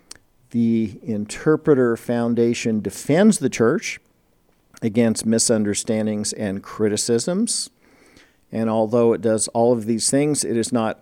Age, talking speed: 50-69, 115 wpm